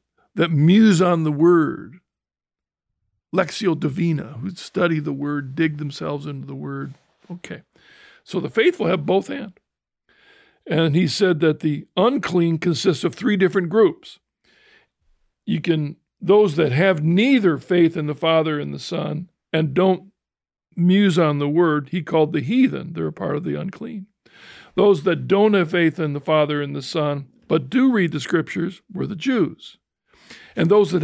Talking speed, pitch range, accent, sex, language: 165 wpm, 150-190 Hz, American, male, English